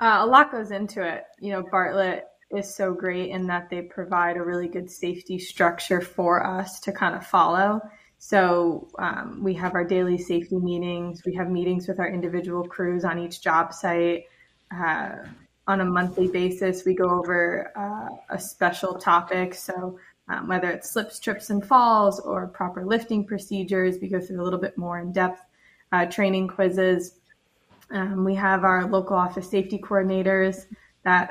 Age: 20-39